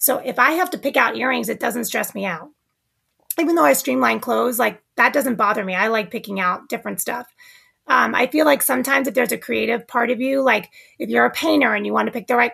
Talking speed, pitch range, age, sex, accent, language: 255 wpm, 215-270 Hz, 30-49, female, American, English